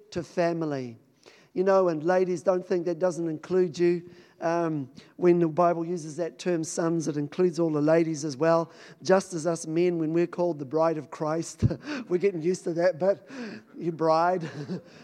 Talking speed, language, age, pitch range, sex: 185 wpm, English, 50-69, 155-180 Hz, male